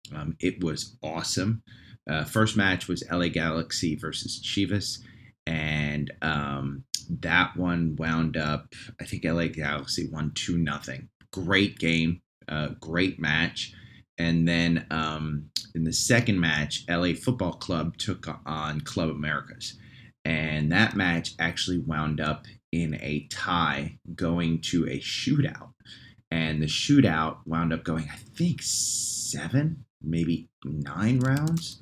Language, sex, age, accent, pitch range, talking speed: English, male, 30-49, American, 75-100 Hz, 130 wpm